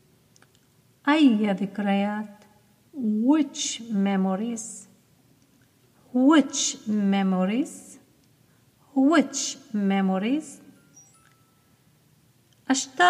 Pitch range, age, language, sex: 190-275 Hz, 40-59, Arabic, female